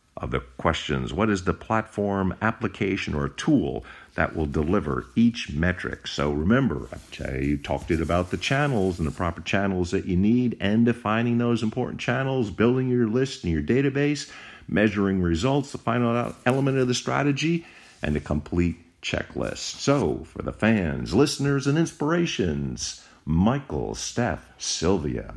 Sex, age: male, 50-69